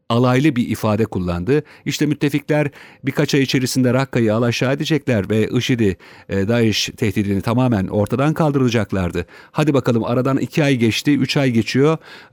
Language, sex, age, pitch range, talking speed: Turkish, male, 50-69, 105-145 Hz, 135 wpm